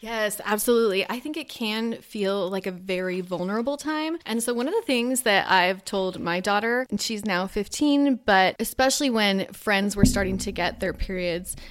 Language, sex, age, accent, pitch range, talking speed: English, female, 20-39, American, 195-265 Hz, 190 wpm